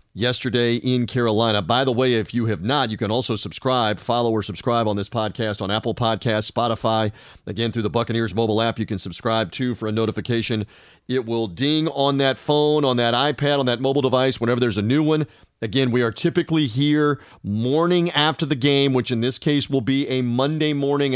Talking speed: 205 wpm